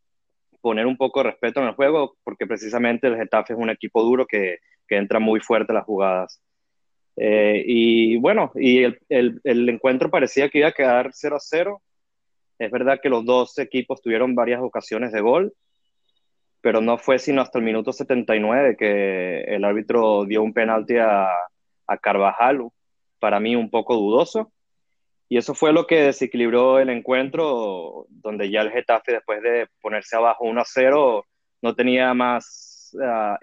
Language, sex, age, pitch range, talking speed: Spanish, male, 20-39, 115-140 Hz, 165 wpm